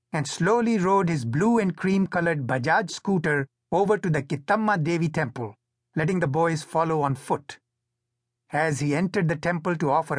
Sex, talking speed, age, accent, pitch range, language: male, 165 wpm, 60-79, Indian, 120-190 Hz, English